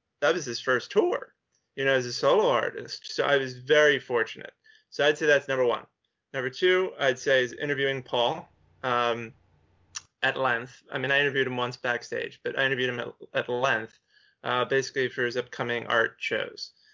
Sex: male